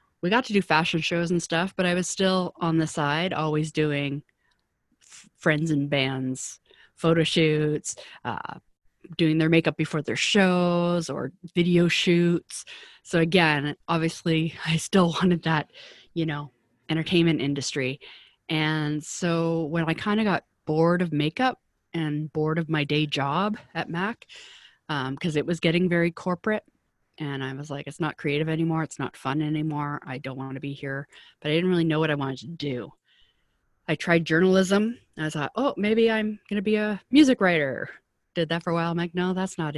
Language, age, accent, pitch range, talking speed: English, 30-49, American, 150-180 Hz, 180 wpm